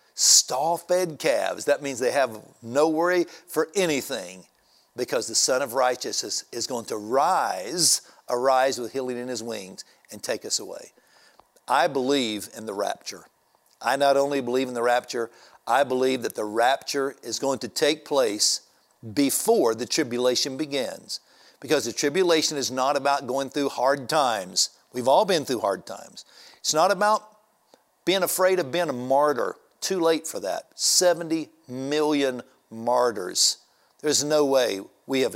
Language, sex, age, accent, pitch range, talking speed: English, male, 50-69, American, 130-165 Hz, 160 wpm